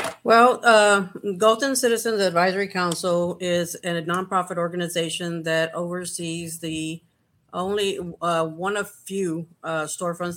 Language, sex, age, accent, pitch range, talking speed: English, female, 50-69, American, 150-170 Hz, 115 wpm